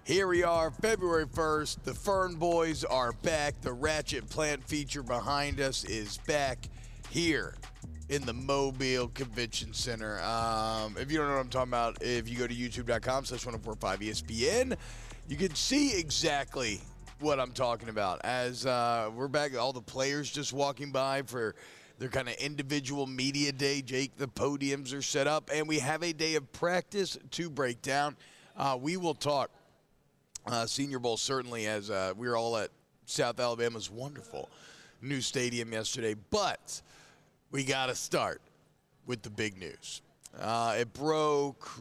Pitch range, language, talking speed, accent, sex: 120-145 Hz, English, 160 wpm, American, male